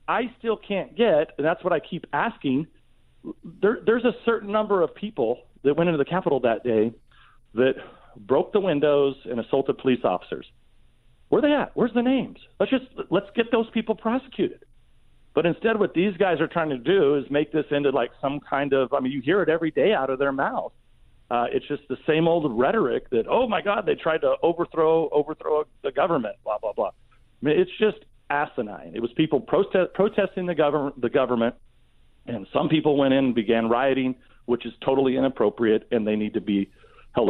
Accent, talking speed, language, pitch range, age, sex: American, 200 wpm, English, 125-180 Hz, 40-59, male